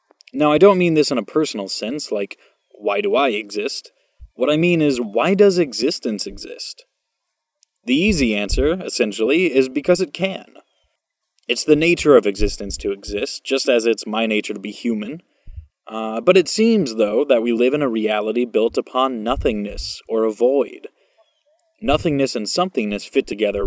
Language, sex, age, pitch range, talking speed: English, male, 20-39, 110-155 Hz, 170 wpm